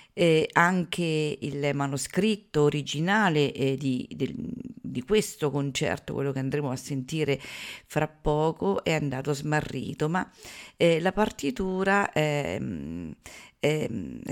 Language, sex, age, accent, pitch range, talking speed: Italian, female, 50-69, native, 140-185 Hz, 110 wpm